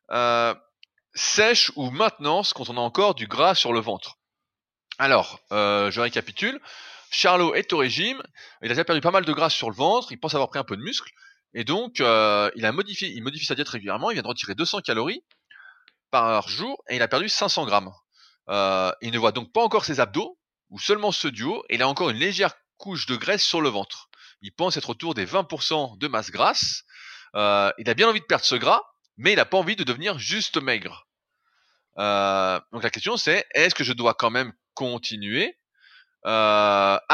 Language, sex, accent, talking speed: French, male, French, 210 wpm